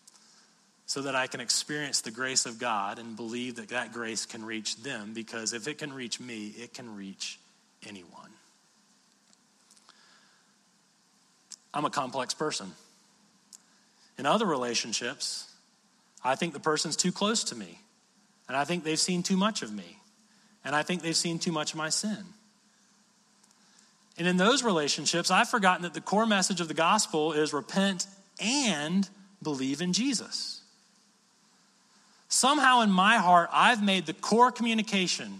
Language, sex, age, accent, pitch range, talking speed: English, male, 40-59, American, 155-215 Hz, 150 wpm